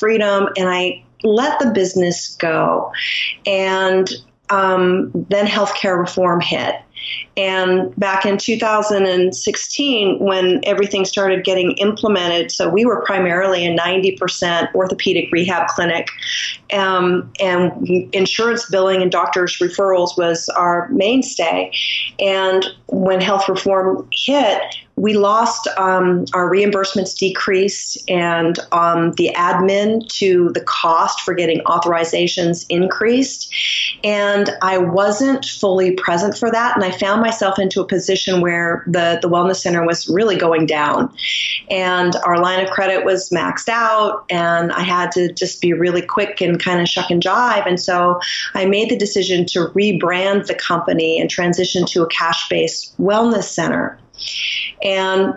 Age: 40-59